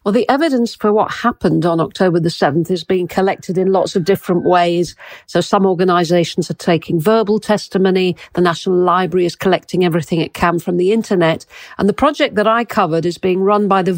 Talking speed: 200 wpm